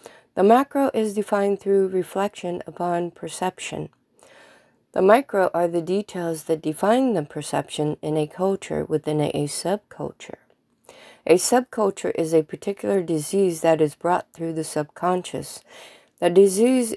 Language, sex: English, female